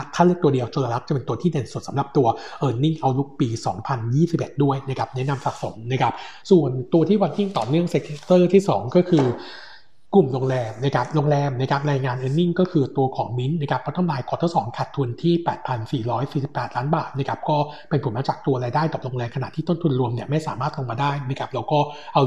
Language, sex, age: Thai, male, 60-79